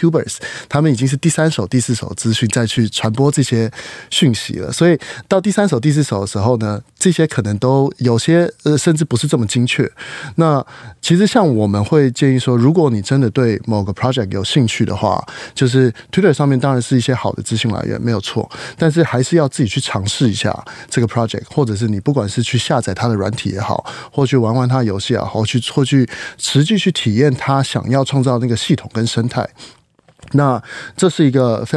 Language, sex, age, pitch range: Chinese, male, 20-39, 115-145 Hz